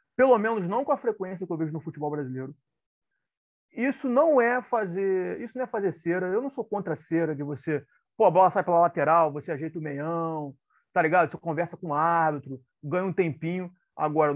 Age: 30-49